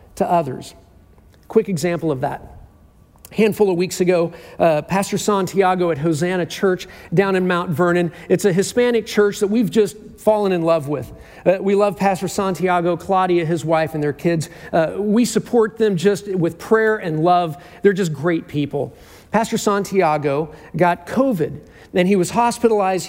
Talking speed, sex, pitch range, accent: 165 wpm, male, 170-205 Hz, American